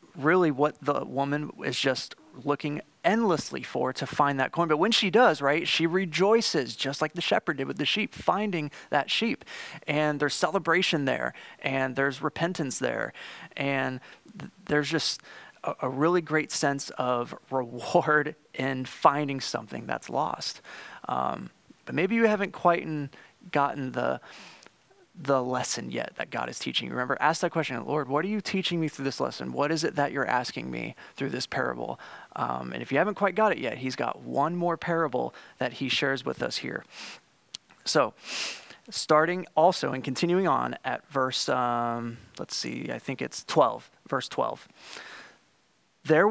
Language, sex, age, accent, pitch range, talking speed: English, male, 30-49, American, 135-175 Hz, 170 wpm